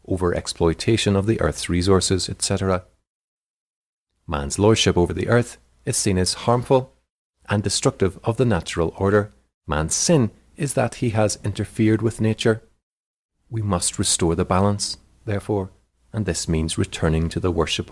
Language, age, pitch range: English, 40-59, 90-110 Hz